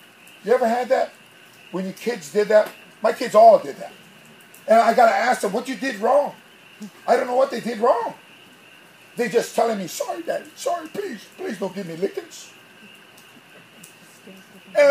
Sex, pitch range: male, 230-290 Hz